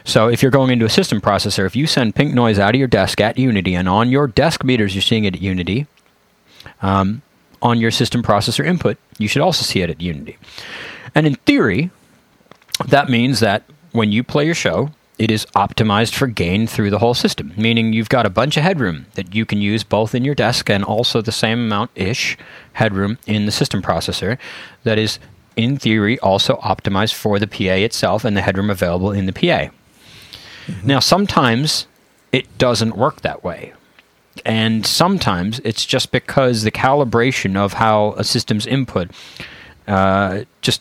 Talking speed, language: 185 wpm, English